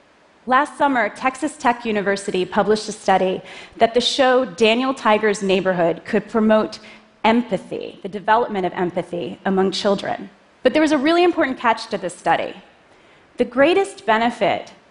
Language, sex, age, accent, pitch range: Chinese, female, 30-49, American, 200-275 Hz